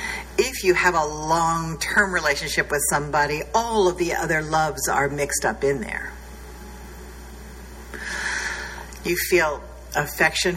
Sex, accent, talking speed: female, American, 120 wpm